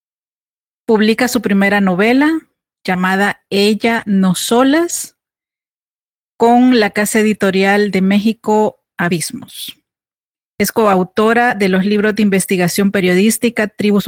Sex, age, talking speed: female, 40-59, 100 wpm